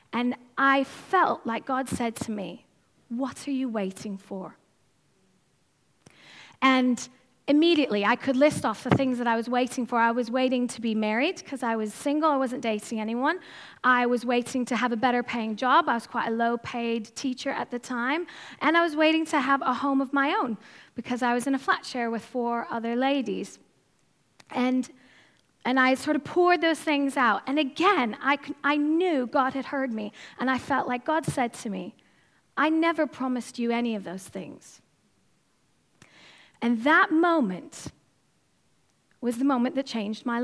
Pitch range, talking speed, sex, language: 235-290 Hz, 185 wpm, female, English